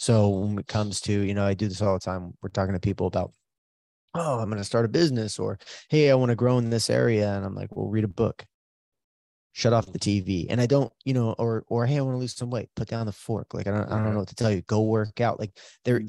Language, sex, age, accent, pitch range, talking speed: English, male, 20-39, American, 100-115 Hz, 285 wpm